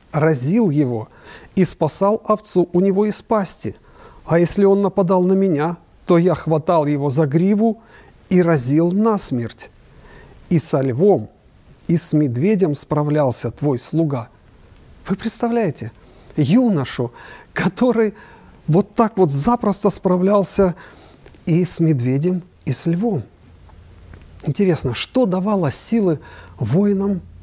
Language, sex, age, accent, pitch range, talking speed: Russian, male, 50-69, native, 140-195 Hz, 115 wpm